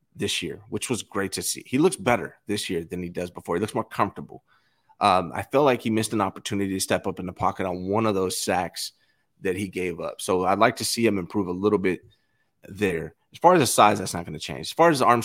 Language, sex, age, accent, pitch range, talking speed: English, male, 30-49, American, 95-125 Hz, 270 wpm